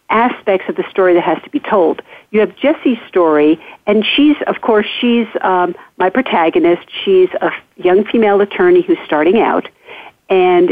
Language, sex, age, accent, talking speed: English, female, 50-69, American, 170 wpm